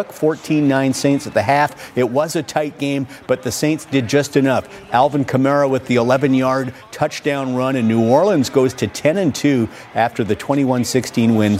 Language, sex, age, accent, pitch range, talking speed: English, male, 50-69, American, 120-150 Hz, 175 wpm